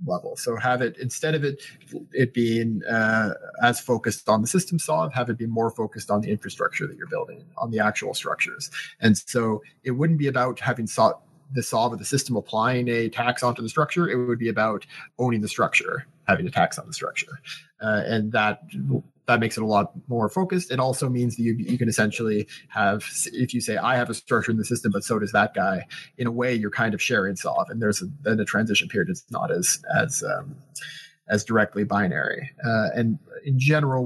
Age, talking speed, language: 30-49, 220 wpm, English